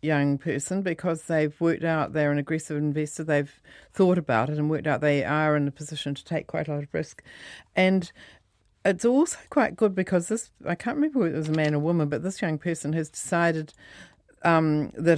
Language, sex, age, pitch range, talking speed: English, female, 50-69, 145-175 Hz, 215 wpm